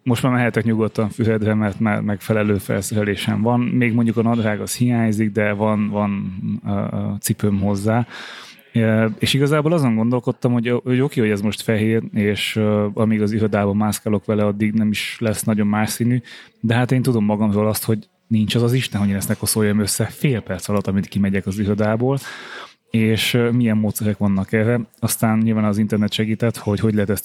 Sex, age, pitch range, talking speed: male, 20-39, 105-120 Hz, 185 wpm